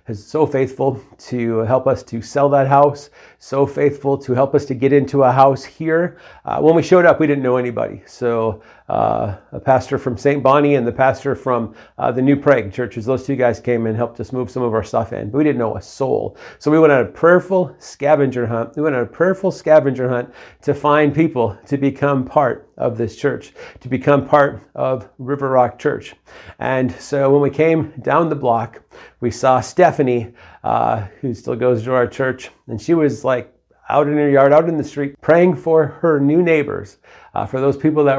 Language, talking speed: English, 215 wpm